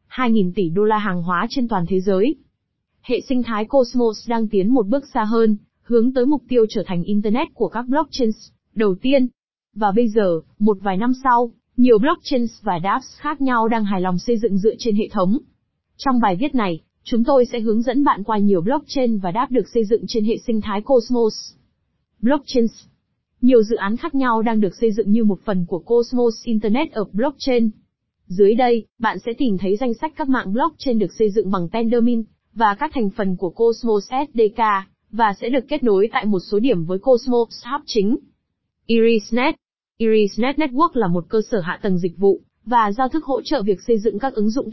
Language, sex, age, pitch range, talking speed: Vietnamese, female, 20-39, 210-255 Hz, 205 wpm